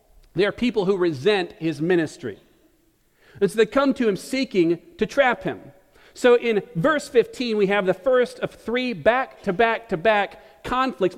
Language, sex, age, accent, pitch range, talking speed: English, male, 40-59, American, 170-240 Hz, 155 wpm